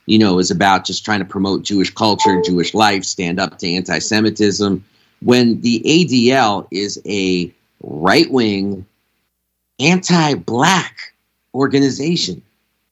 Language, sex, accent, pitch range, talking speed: English, male, American, 105-135 Hz, 115 wpm